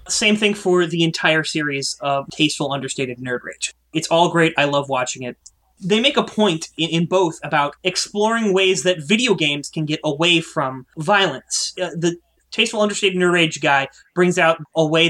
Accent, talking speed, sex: American, 185 wpm, male